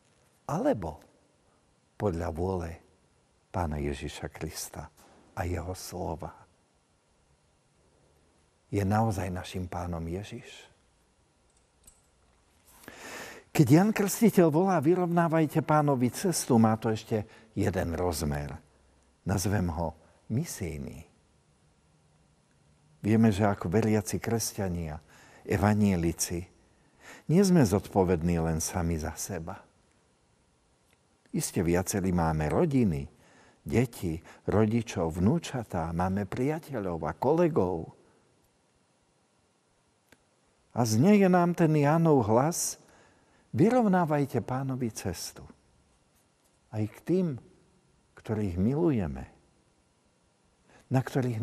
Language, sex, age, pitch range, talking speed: Slovak, male, 50-69, 85-130 Hz, 85 wpm